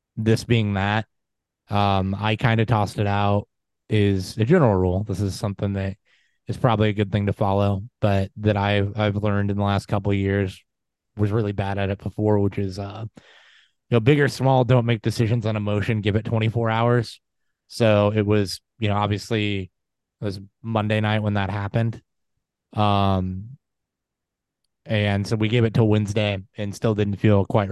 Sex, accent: male, American